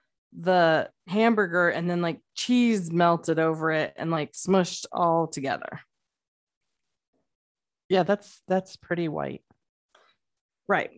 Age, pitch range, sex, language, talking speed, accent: 20-39, 170-200 Hz, female, English, 110 wpm, American